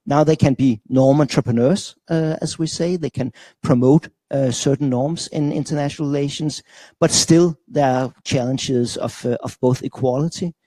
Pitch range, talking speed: 120-150 Hz, 165 wpm